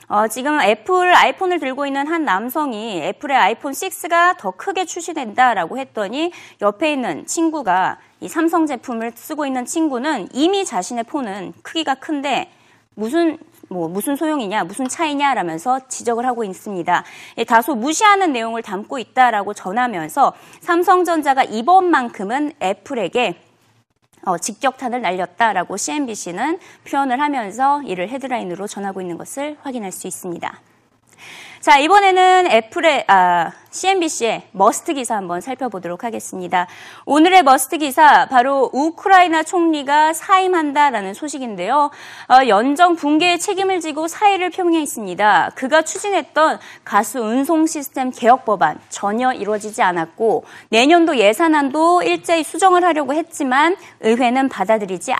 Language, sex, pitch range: Korean, female, 220-330 Hz